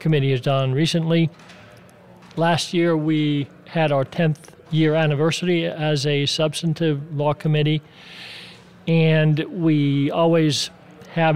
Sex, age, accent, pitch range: male, 40-59, American, 150-170 Hz